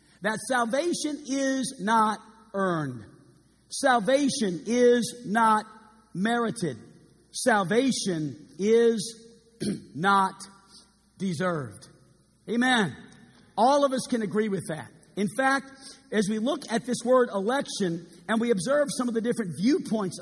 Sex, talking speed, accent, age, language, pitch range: male, 115 wpm, American, 50-69, English, 195-255 Hz